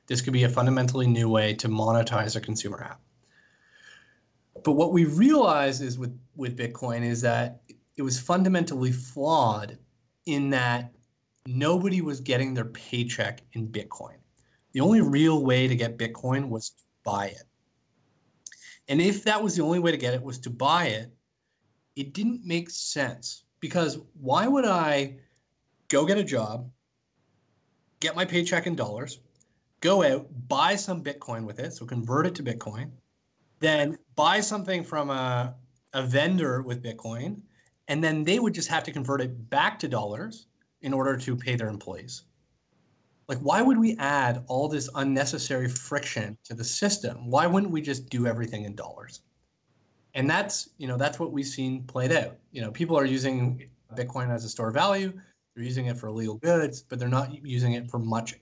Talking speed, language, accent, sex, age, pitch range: 175 wpm, English, American, male, 30-49, 120-155 Hz